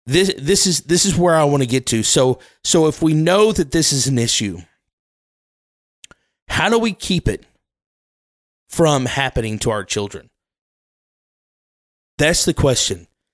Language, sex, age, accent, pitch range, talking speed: English, male, 30-49, American, 115-160 Hz, 155 wpm